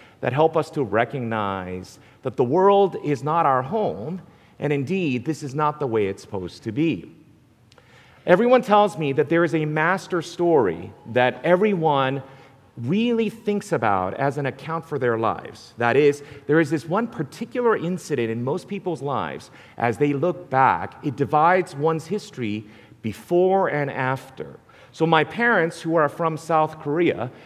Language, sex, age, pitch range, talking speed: English, male, 40-59, 130-175 Hz, 160 wpm